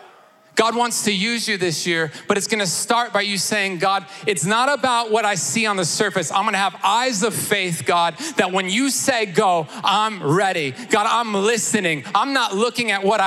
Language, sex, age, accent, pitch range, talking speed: English, male, 30-49, American, 190-230 Hz, 215 wpm